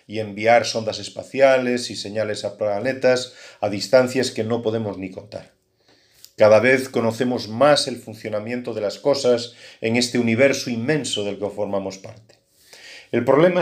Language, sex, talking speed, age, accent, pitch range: Spanish, male, 150 wpm, 40-59, Spanish, 105-135 Hz